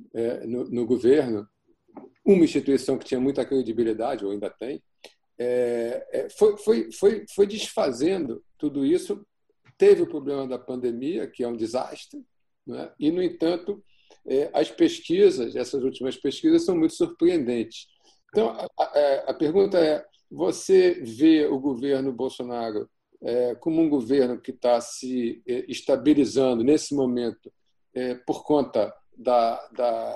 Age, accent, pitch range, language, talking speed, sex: 40-59, Brazilian, 120-165 Hz, Portuguese, 135 wpm, male